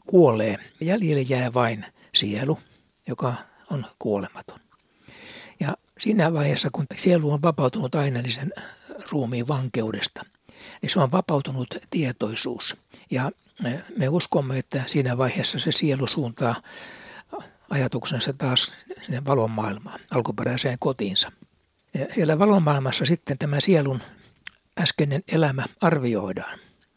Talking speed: 105 wpm